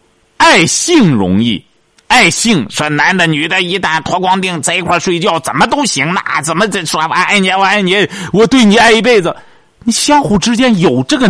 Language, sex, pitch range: Chinese, male, 150-230 Hz